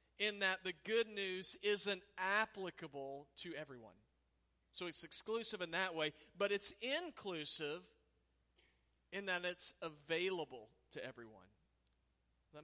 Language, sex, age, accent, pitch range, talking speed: English, male, 40-59, American, 125-180 Hz, 125 wpm